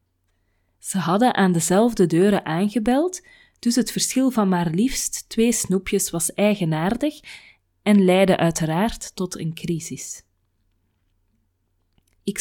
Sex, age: female, 20-39